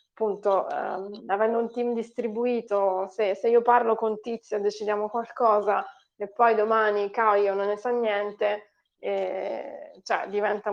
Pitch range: 200-235 Hz